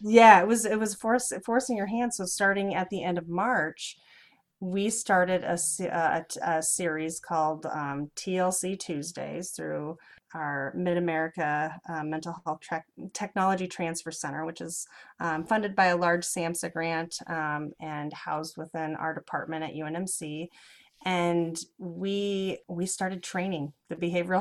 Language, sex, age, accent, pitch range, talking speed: English, female, 30-49, American, 160-185 Hz, 145 wpm